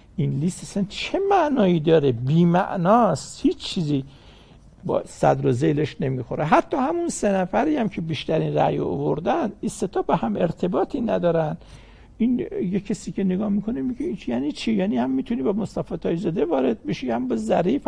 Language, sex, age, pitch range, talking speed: Persian, male, 60-79, 150-220 Hz, 170 wpm